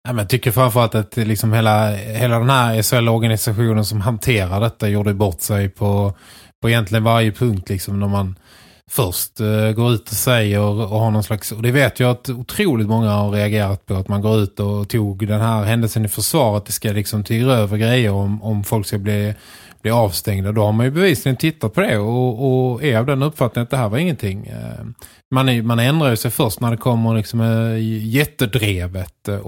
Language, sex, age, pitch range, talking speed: Swedish, male, 20-39, 105-120 Hz, 210 wpm